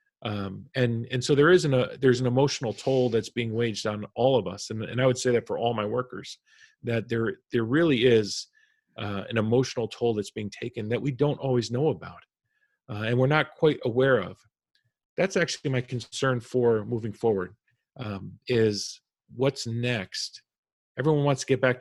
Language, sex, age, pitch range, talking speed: English, male, 40-59, 110-135 Hz, 195 wpm